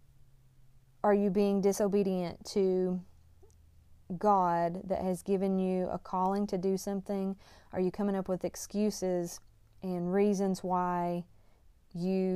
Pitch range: 175-195 Hz